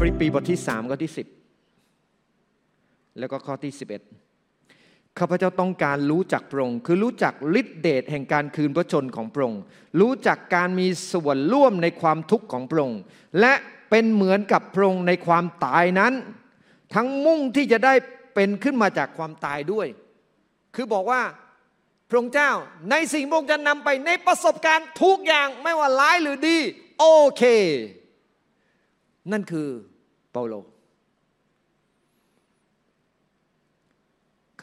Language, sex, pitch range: Thai, male, 160-265 Hz